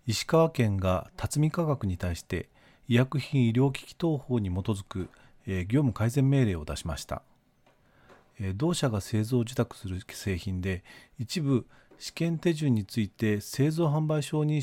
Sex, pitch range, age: male, 95-135 Hz, 40-59